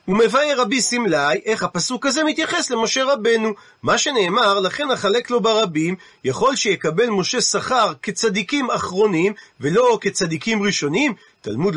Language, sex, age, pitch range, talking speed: Hebrew, male, 40-59, 195-255 Hz, 130 wpm